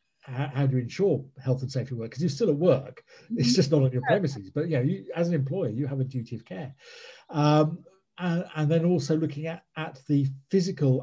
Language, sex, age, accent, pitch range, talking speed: English, male, 40-59, British, 125-150 Hz, 230 wpm